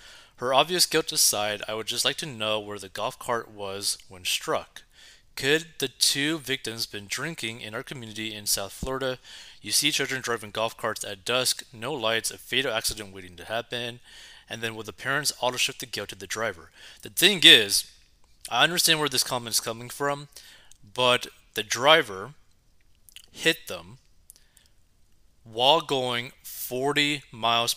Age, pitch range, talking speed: 30-49, 100-135 Hz, 165 wpm